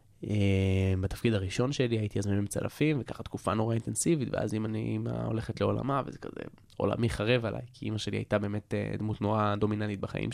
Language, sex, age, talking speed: Hebrew, male, 20-39, 170 wpm